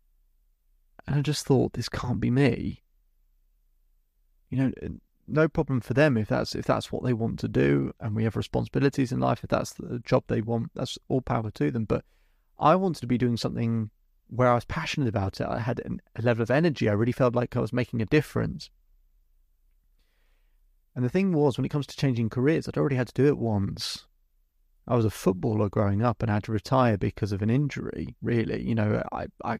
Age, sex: 30-49, male